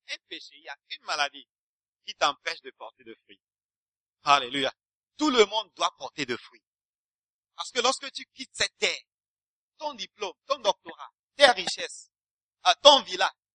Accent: French